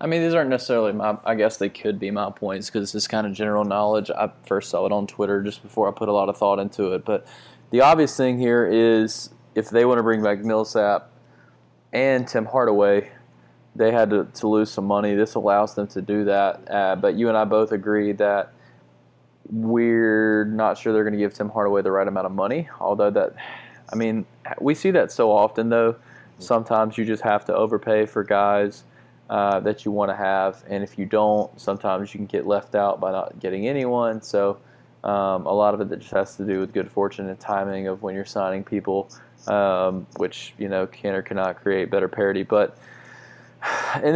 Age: 20-39